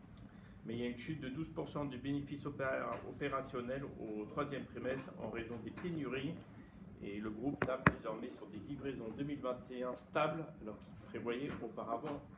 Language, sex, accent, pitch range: French, male, French, 110-145 Hz